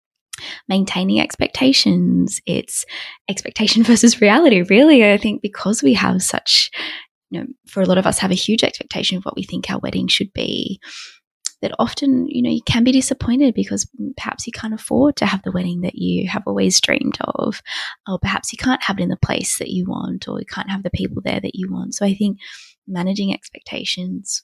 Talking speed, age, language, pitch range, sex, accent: 200 wpm, 20-39, English, 185-245 Hz, female, Australian